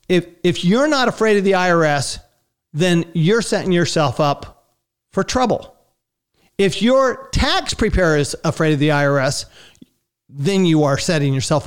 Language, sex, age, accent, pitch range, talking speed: English, male, 50-69, American, 155-210 Hz, 150 wpm